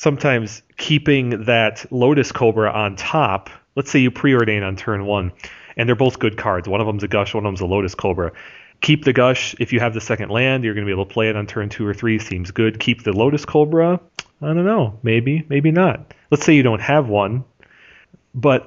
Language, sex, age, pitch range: English, male, 30-49, 95-120 Hz